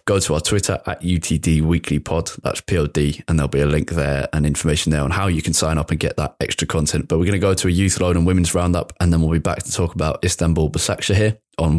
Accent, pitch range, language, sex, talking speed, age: British, 80-95 Hz, English, male, 270 wpm, 20-39